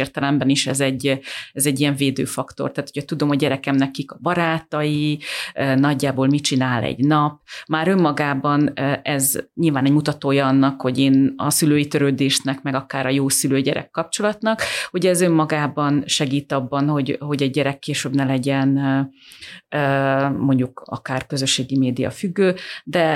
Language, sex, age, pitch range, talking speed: Hungarian, female, 30-49, 135-150 Hz, 150 wpm